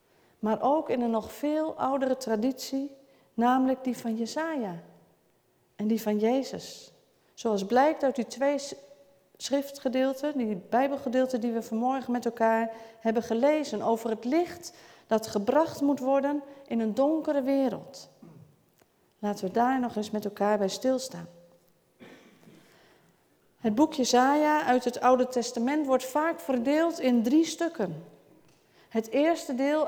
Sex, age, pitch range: female, 40-59, 225-280 Hz